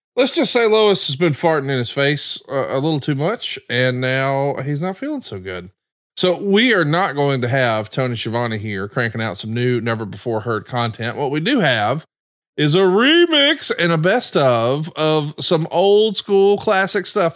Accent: American